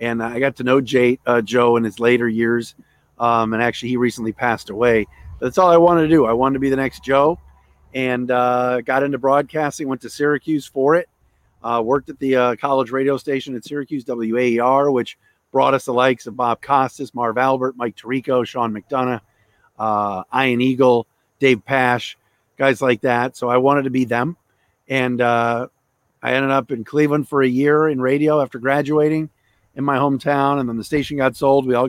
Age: 40-59